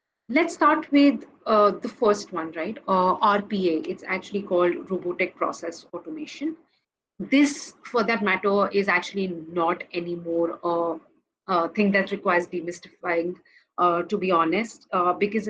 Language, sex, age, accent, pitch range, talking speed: English, female, 30-49, Indian, 180-235 Hz, 145 wpm